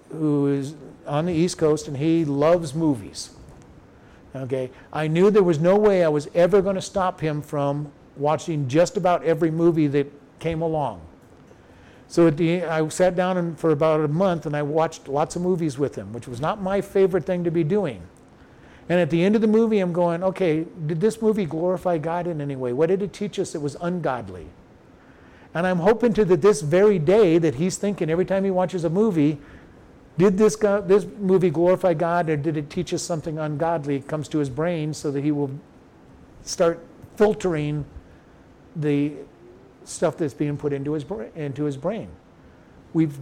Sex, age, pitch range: male, 50-69, 145-180 Hz